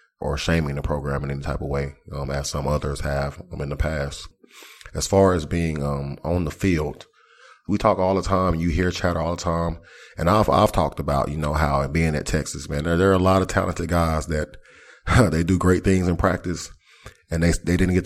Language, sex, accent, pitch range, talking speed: English, male, American, 80-95 Hz, 235 wpm